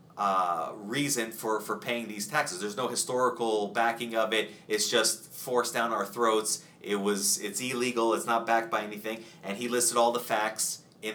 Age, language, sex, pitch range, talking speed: 30-49, English, male, 115-165 Hz, 190 wpm